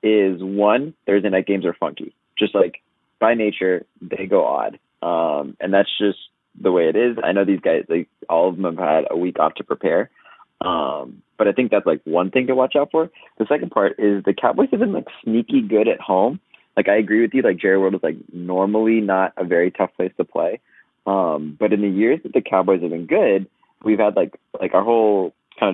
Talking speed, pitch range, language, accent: 230 wpm, 90-110 Hz, English, American